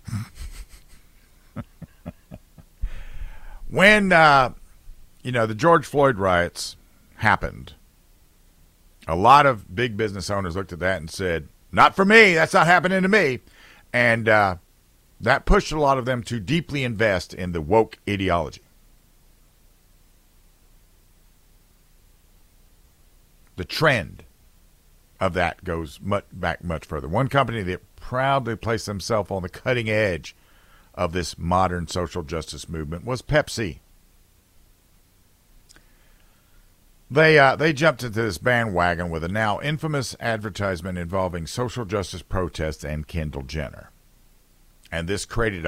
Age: 50-69